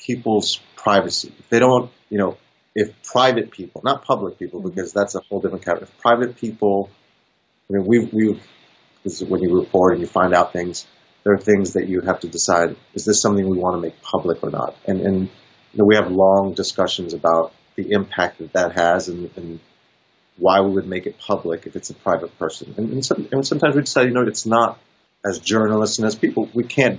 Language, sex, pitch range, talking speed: English, male, 95-115 Hz, 215 wpm